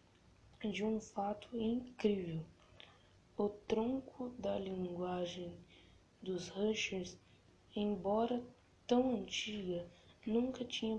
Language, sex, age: Portuguese, female, 10-29